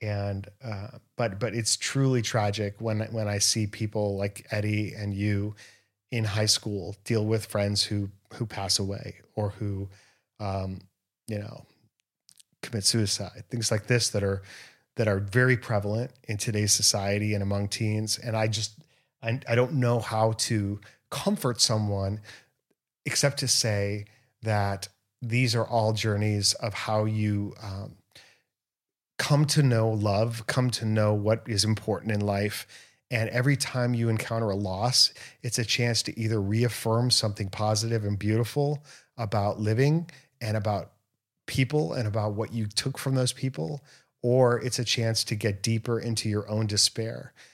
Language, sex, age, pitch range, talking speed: English, male, 30-49, 105-125 Hz, 155 wpm